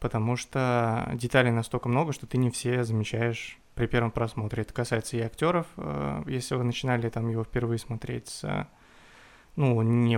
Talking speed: 155 wpm